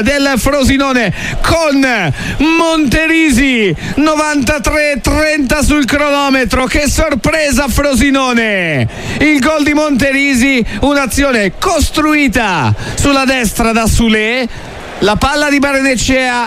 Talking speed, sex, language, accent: 85 wpm, male, Italian, native